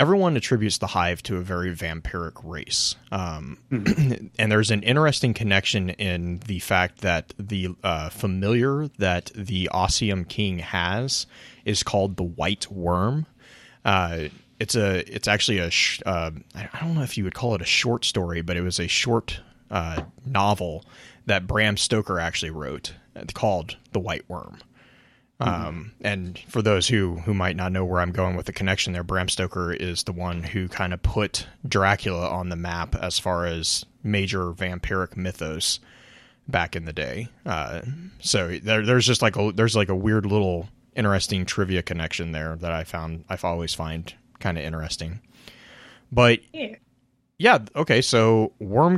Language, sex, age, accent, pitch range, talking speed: English, male, 30-49, American, 90-110 Hz, 165 wpm